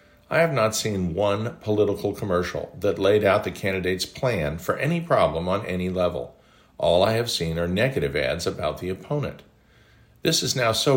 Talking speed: 180 wpm